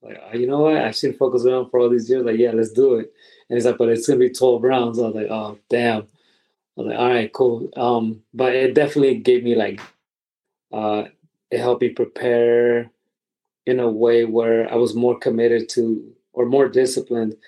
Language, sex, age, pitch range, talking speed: English, male, 20-39, 115-130 Hz, 215 wpm